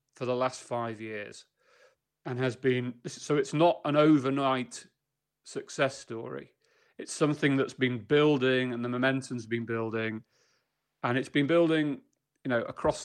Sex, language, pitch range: male, English, 120-145 Hz